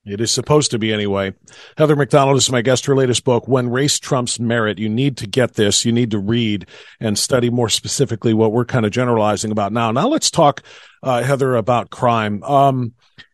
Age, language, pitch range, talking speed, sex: 40-59, English, 115-155 Hz, 205 wpm, male